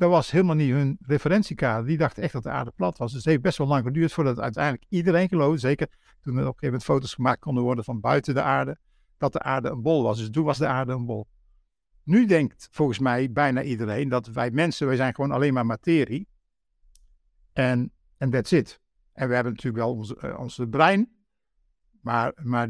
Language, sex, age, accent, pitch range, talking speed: Dutch, male, 60-79, Dutch, 125-160 Hz, 215 wpm